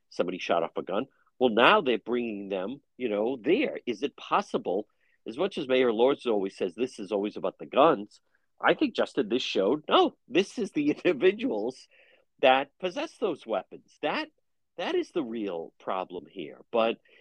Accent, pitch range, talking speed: American, 105-150 Hz, 180 wpm